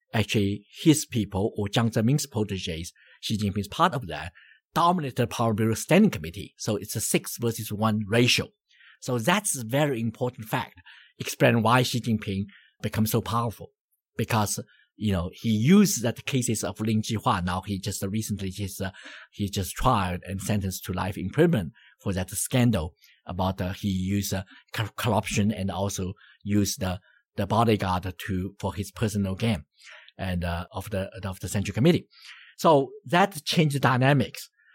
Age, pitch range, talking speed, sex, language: 50-69, 100-145 Hz, 165 wpm, male, English